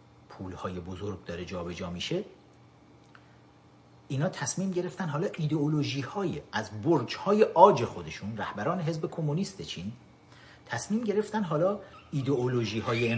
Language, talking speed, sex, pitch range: Persian, 120 wpm, male, 90-120 Hz